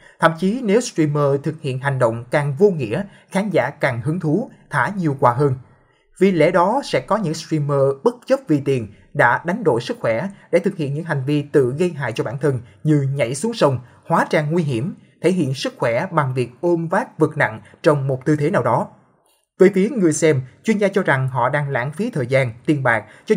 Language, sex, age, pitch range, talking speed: Vietnamese, male, 20-39, 140-185 Hz, 230 wpm